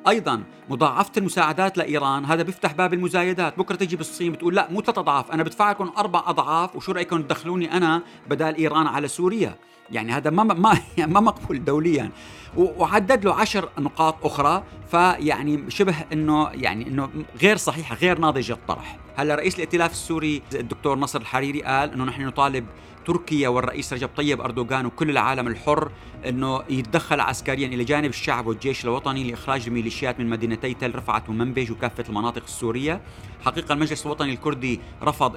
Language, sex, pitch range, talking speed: Arabic, male, 125-155 Hz, 155 wpm